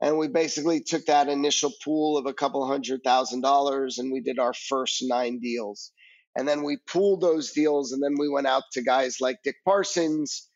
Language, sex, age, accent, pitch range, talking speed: English, male, 30-49, American, 135-155 Hz, 205 wpm